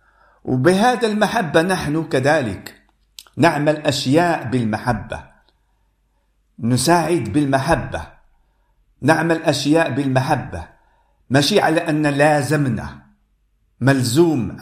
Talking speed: 70 wpm